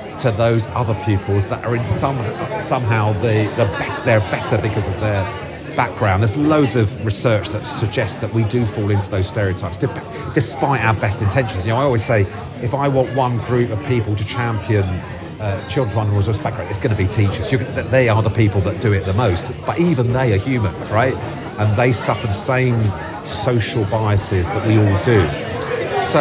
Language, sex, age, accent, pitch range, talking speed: English, male, 40-59, British, 105-135 Hz, 195 wpm